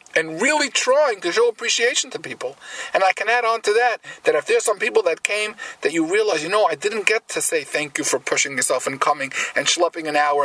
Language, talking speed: English, 245 wpm